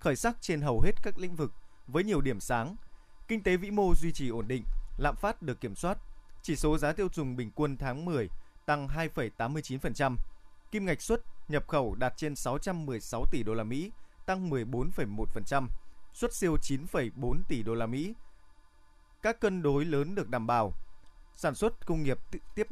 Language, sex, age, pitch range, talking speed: Vietnamese, male, 20-39, 115-160 Hz, 180 wpm